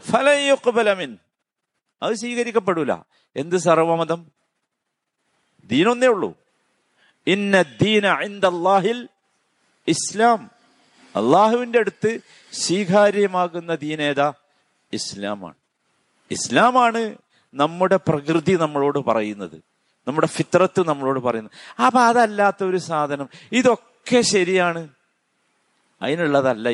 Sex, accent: male, native